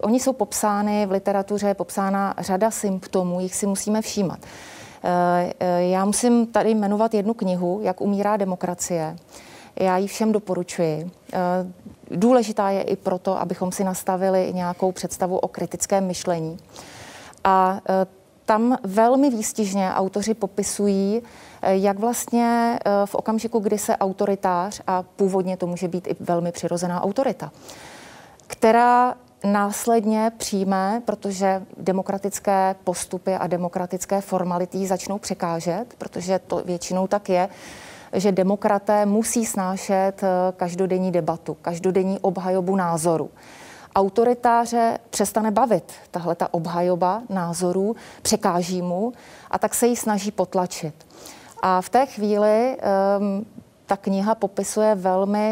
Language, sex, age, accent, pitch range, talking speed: Czech, female, 30-49, native, 180-210 Hz, 115 wpm